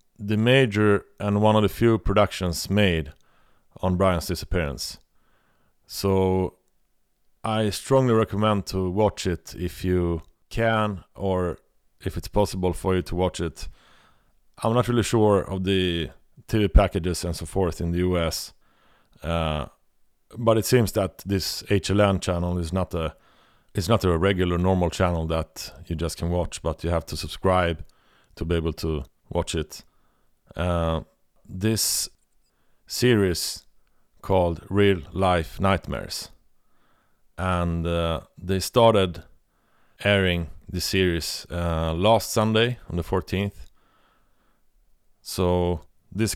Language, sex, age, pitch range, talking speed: English, male, 30-49, 85-100 Hz, 130 wpm